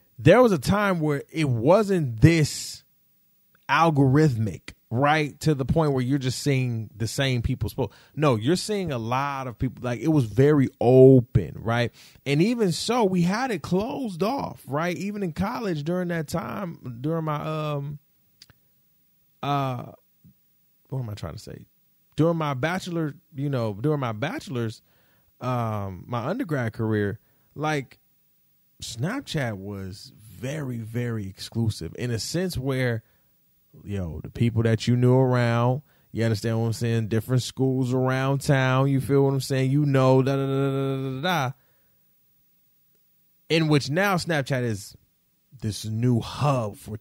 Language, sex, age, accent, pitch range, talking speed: English, male, 20-39, American, 115-155 Hz, 155 wpm